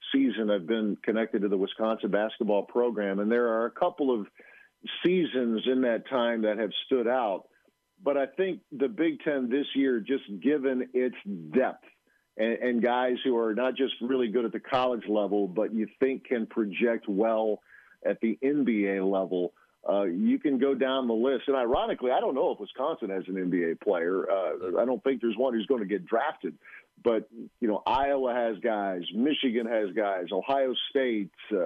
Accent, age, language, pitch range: American, 50-69, English, 105-135 Hz